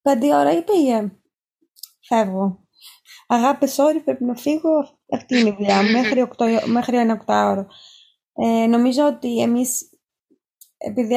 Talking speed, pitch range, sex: 170 wpm, 220-275 Hz, female